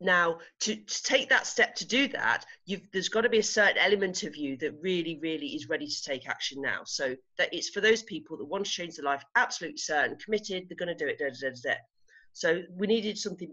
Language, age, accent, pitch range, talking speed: English, 40-59, British, 145-215 Hz, 240 wpm